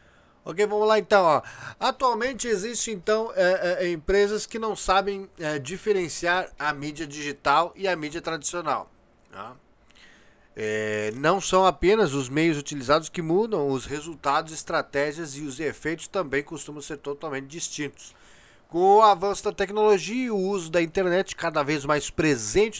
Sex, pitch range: male, 145-195 Hz